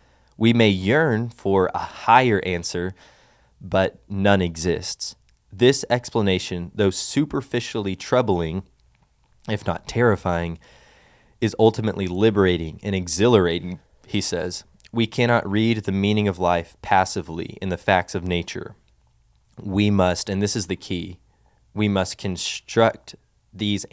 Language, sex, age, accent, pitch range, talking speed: English, male, 20-39, American, 90-115 Hz, 125 wpm